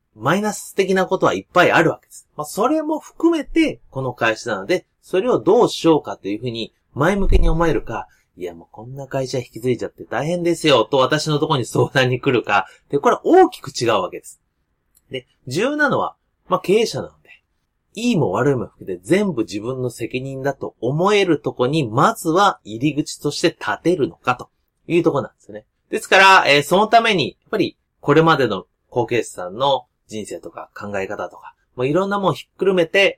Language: Japanese